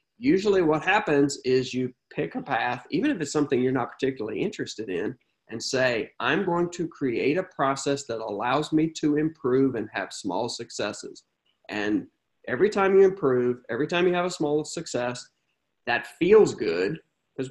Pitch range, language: 130-180 Hz, English